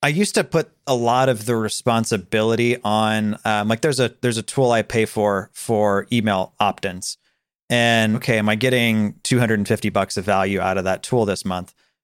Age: 30-49